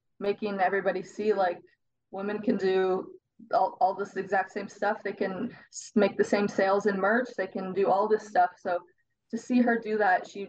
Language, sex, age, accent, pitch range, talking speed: English, female, 20-39, American, 180-210 Hz, 195 wpm